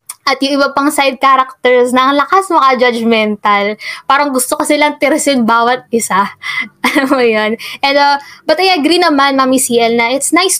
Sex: female